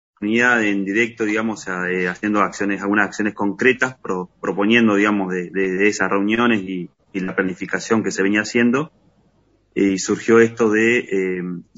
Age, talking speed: 30-49, 160 wpm